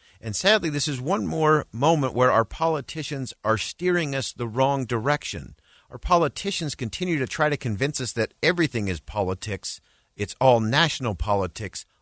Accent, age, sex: American, 50-69, male